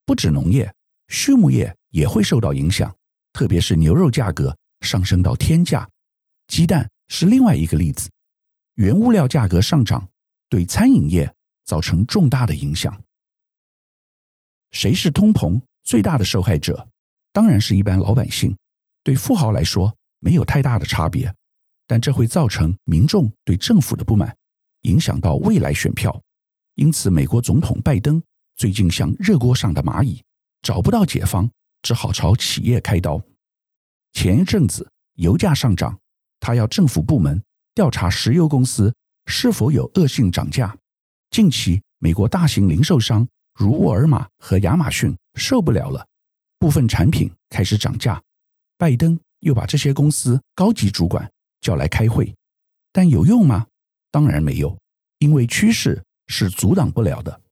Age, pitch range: 50-69, 95-150 Hz